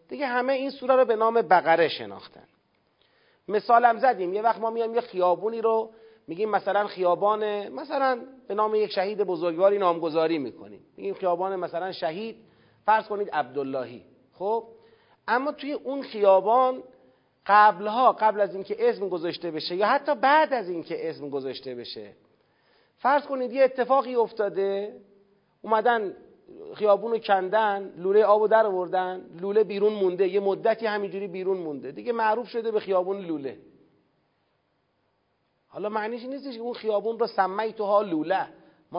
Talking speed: 145 wpm